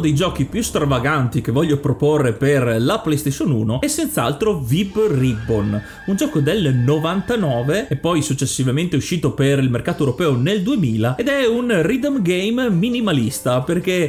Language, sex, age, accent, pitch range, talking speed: Italian, male, 30-49, native, 140-200 Hz, 155 wpm